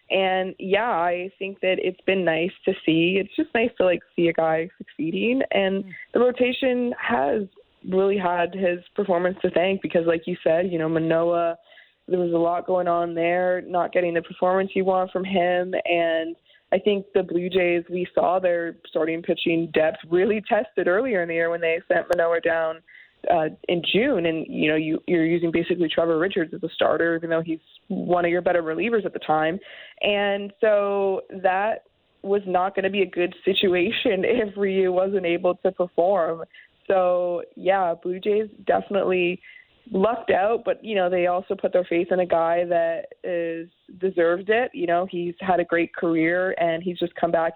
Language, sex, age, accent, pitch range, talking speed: English, female, 20-39, American, 170-195 Hz, 190 wpm